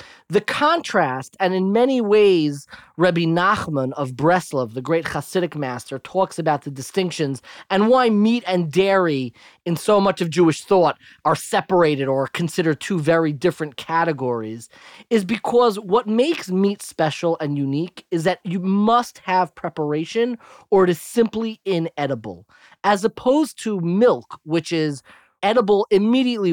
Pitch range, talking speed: 150-205 Hz, 145 wpm